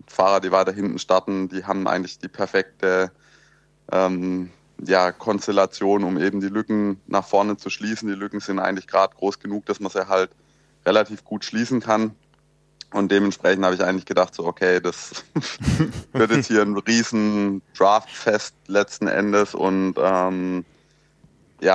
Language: German